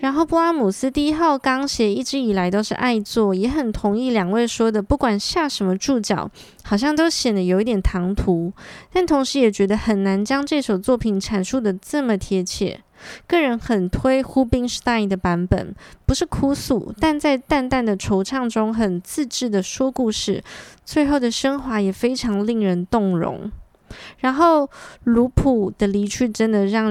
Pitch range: 200-255 Hz